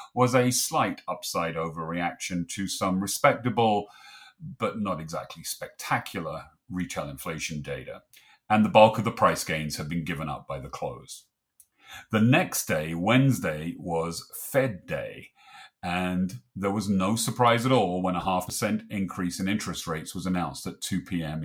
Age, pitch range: 40-59, 90-120 Hz